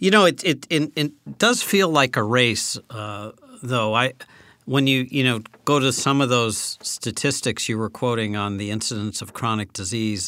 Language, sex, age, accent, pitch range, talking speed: English, male, 50-69, American, 105-130 Hz, 195 wpm